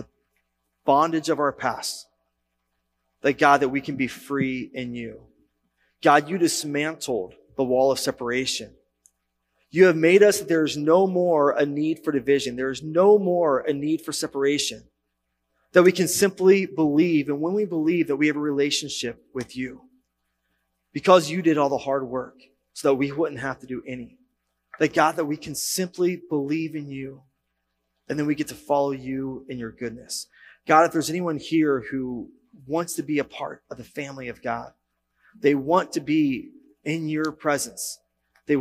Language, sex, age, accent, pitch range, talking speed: English, male, 30-49, American, 110-155 Hz, 175 wpm